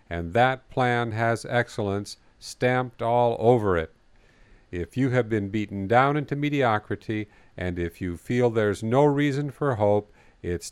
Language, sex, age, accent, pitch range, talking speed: English, male, 50-69, American, 100-125 Hz, 150 wpm